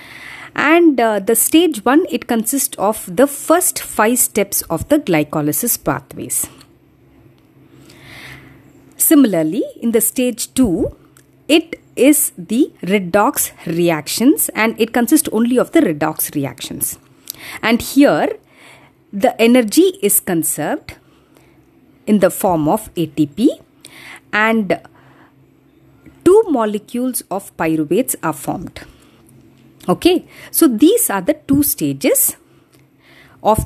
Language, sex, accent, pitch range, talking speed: English, female, Indian, 170-285 Hz, 105 wpm